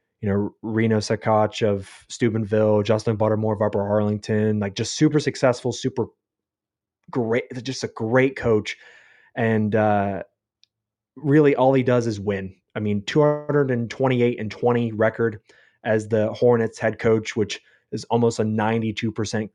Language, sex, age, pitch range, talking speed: English, male, 20-39, 105-120 Hz, 135 wpm